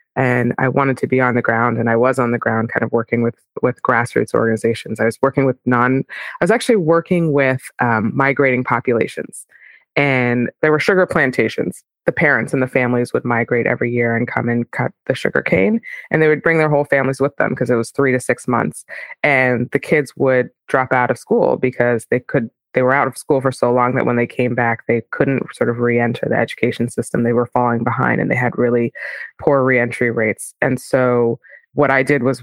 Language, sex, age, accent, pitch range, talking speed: English, female, 20-39, American, 120-135 Hz, 220 wpm